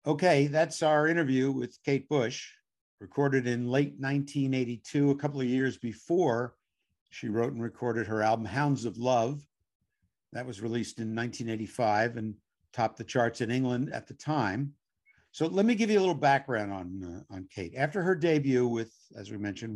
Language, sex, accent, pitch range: English, male, American, 115-140 Hz